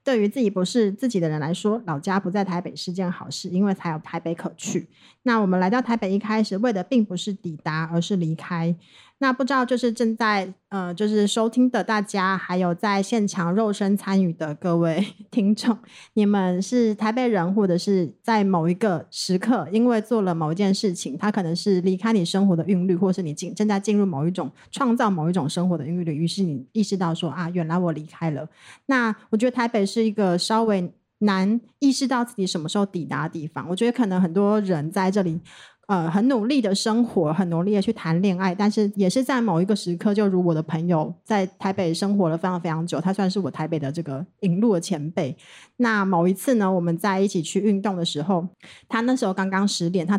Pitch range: 175-215 Hz